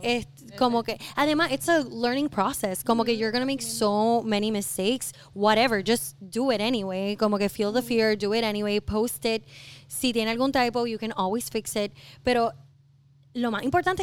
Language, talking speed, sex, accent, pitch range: Spanish, 195 wpm, female, American, 205-255 Hz